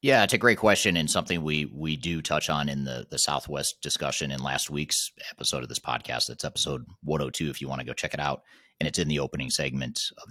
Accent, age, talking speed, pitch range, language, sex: American, 30-49, 245 wpm, 70-80 Hz, English, male